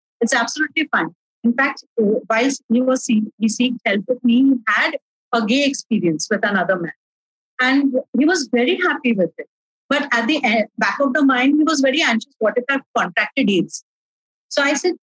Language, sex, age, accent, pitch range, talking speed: English, female, 50-69, Indian, 225-290 Hz, 185 wpm